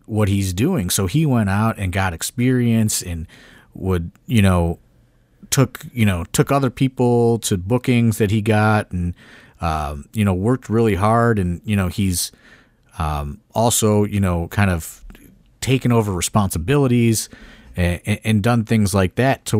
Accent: American